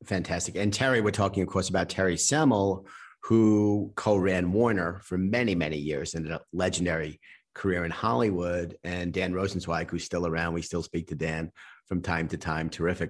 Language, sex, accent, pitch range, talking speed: English, male, American, 90-110 Hz, 180 wpm